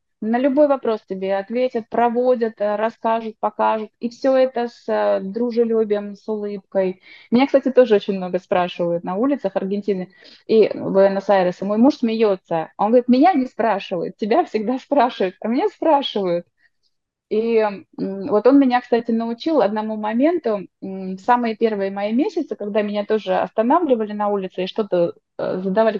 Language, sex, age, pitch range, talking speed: Russian, female, 20-39, 200-255 Hz, 145 wpm